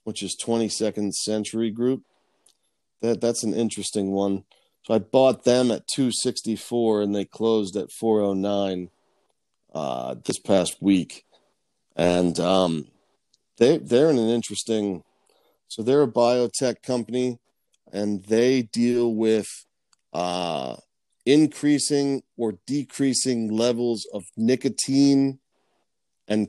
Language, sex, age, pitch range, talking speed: English, male, 40-59, 100-120 Hz, 120 wpm